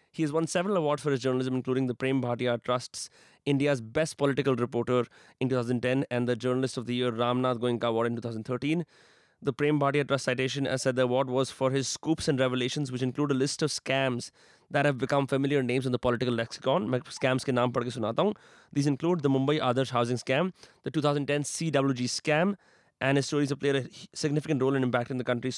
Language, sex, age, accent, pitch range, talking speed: Hindi, male, 20-39, native, 120-140 Hz, 215 wpm